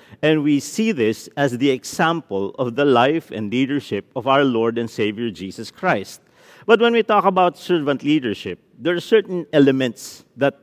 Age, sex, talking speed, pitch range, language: 50-69, male, 175 wpm, 115-165 Hz, English